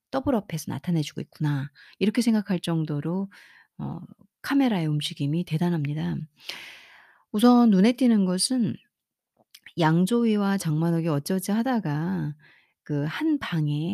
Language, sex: Korean, female